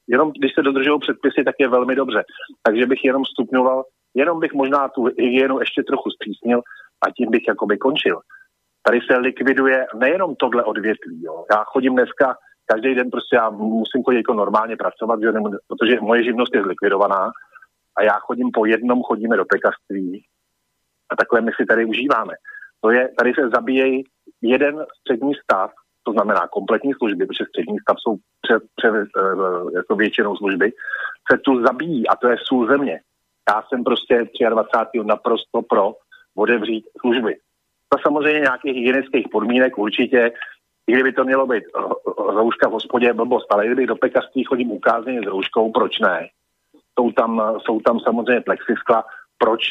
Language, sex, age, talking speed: Slovak, male, 40-59, 165 wpm